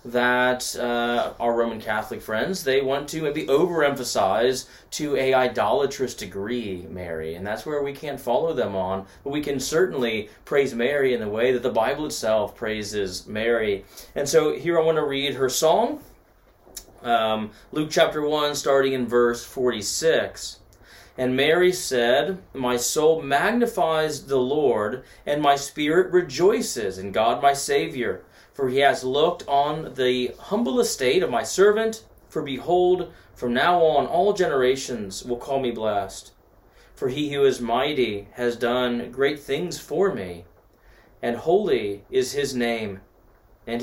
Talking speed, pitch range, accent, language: 150 wpm, 115-150 Hz, American, English